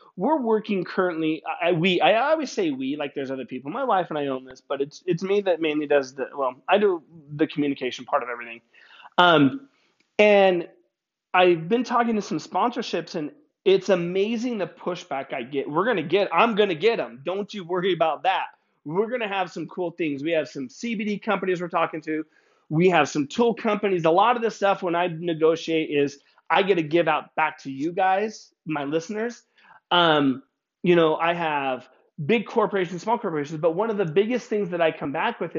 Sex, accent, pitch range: male, American, 145-195 Hz